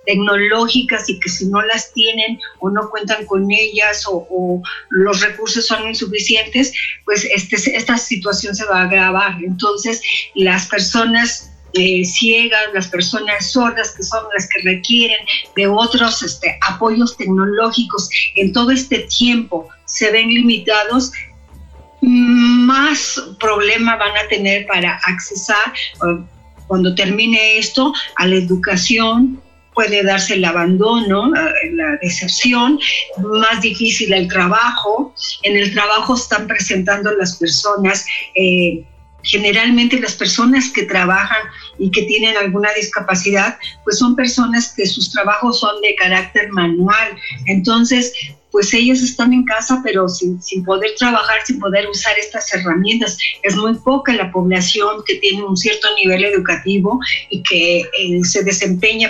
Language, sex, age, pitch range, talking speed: Spanish, female, 50-69, 190-230 Hz, 135 wpm